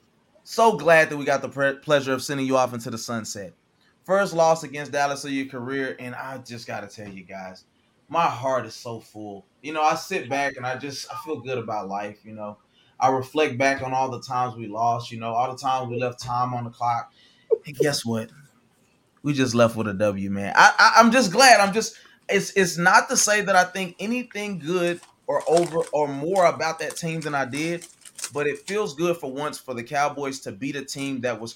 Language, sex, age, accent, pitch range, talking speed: English, male, 20-39, American, 125-180 Hz, 235 wpm